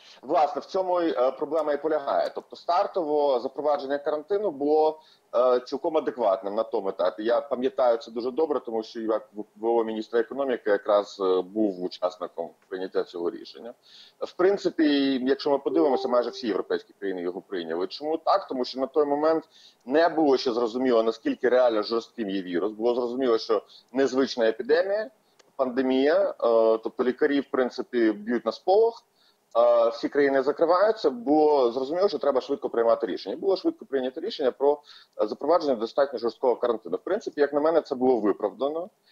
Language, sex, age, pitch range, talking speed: Ukrainian, male, 30-49, 115-160 Hz, 155 wpm